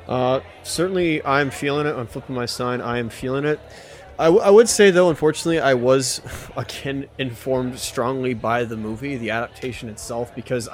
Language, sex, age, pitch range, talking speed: English, male, 20-39, 110-130 Hz, 175 wpm